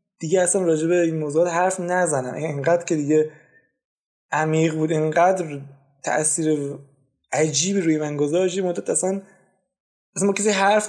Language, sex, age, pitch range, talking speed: Persian, male, 20-39, 145-185 Hz, 125 wpm